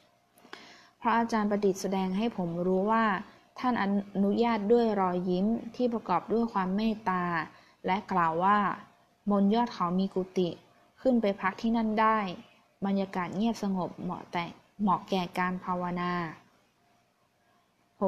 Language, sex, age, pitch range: Thai, female, 20-39, 185-215 Hz